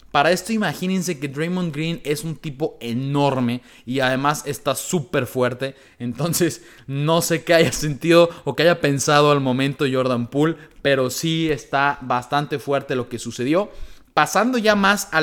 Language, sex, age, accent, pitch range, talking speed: Spanish, male, 30-49, Mexican, 140-175 Hz, 160 wpm